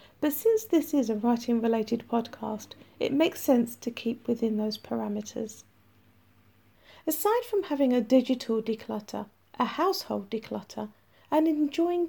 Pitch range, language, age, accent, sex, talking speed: 220-290 Hz, English, 40-59, British, female, 130 wpm